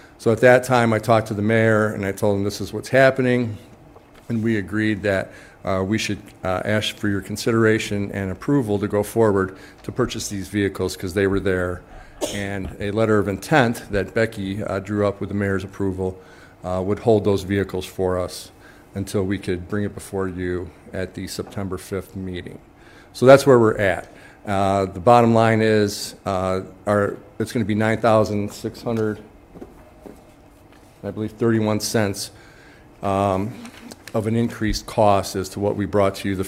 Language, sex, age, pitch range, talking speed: English, male, 50-69, 95-115 Hz, 185 wpm